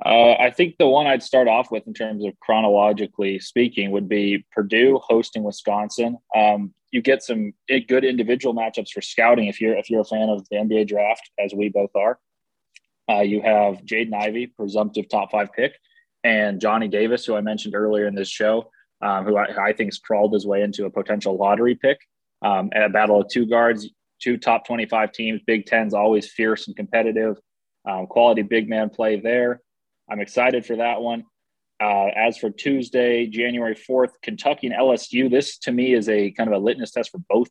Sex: male